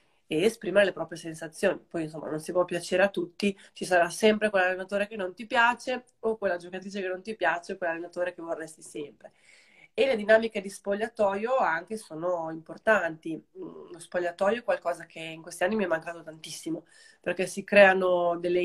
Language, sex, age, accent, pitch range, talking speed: Italian, female, 20-39, native, 170-200 Hz, 185 wpm